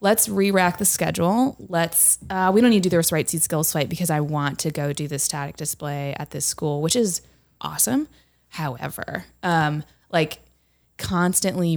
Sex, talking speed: female, 170 wpm